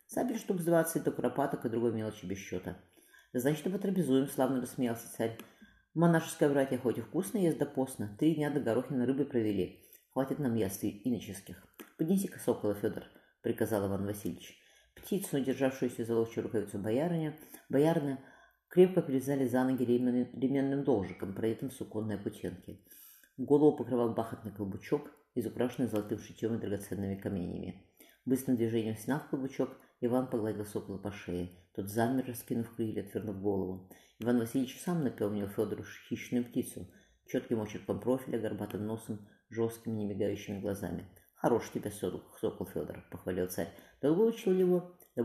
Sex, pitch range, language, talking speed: female, 105-135 Hz, Russian, 155 wpm